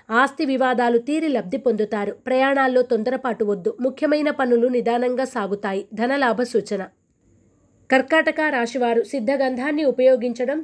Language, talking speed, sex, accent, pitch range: Telugu, 105 wpm, female, native, 230-280 Hz